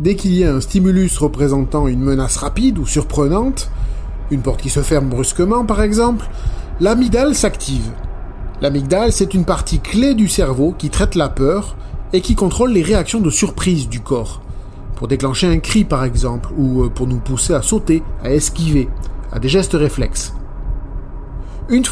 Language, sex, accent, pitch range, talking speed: French, male, French, 130-200 Hz, 165 wpm